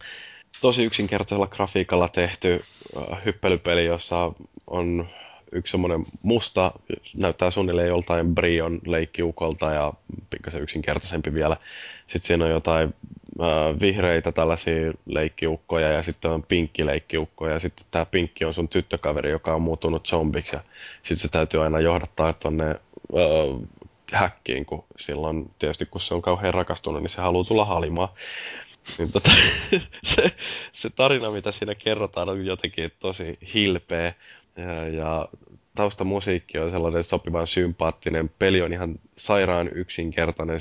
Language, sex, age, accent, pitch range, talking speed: Finnish, male, 20-39, native, 80-90 Hz, 125 wpm